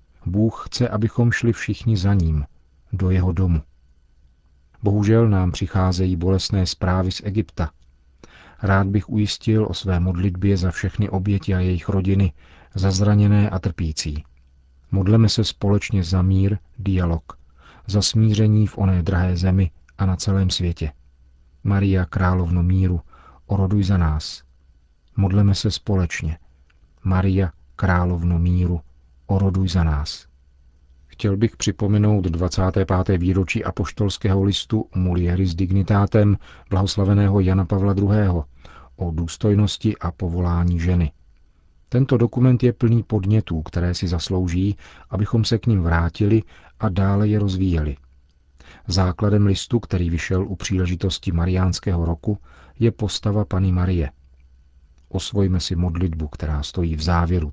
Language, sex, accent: Czech, male, native